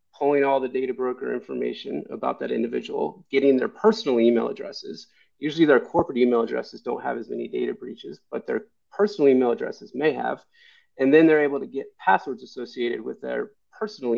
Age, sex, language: 30-49, male, English